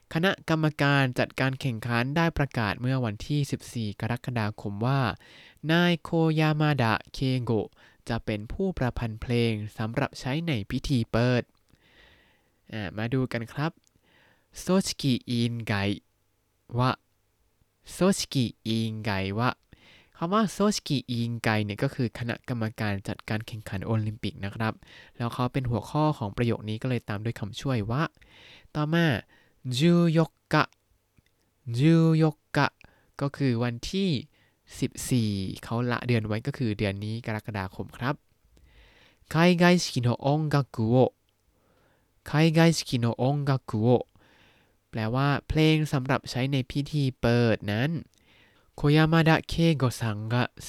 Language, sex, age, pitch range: Thai, male, 20-39, 110-145 Hz